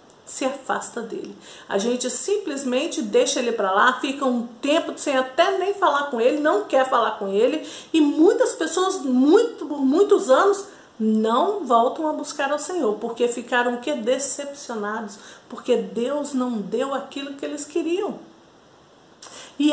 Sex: female